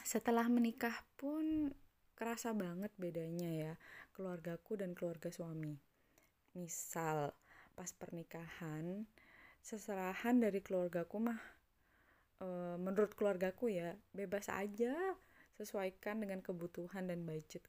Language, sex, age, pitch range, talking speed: Indonesian, female, 20-39, 170-220 Hz, 100 wpm